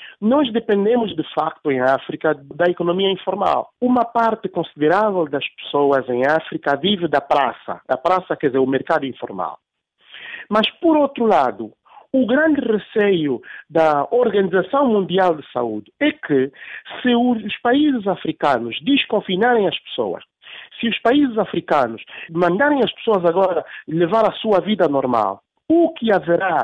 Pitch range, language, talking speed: 155-235 Hz, English, 140 wpm